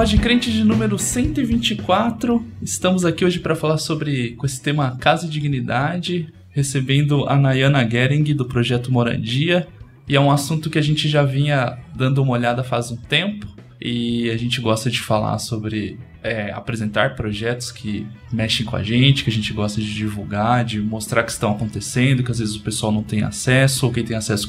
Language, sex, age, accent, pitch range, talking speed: Portuguese, male, 20-39, Brazilian, 115-145 Hz, 185 wpm